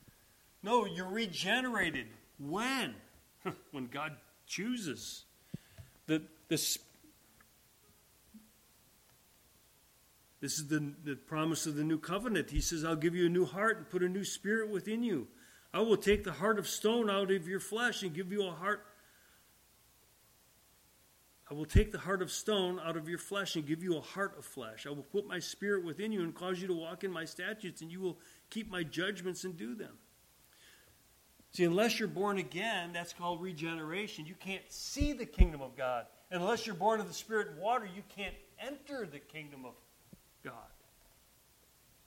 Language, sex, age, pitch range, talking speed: English, male, 40-59, 150-195 Hz, 175 wpm